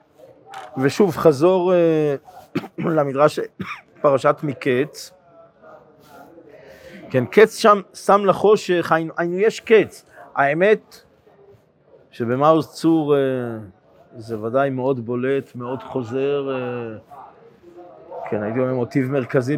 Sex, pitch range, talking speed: male, 120-160 Hz, 85 wpm